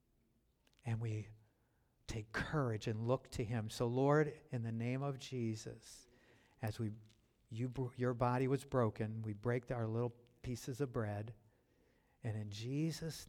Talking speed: 150 wpm